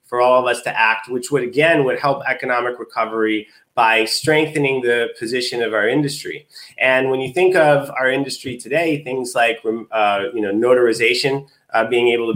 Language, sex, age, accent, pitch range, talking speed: English, male, 30-49, American, 115-140 Hz, 185 wpm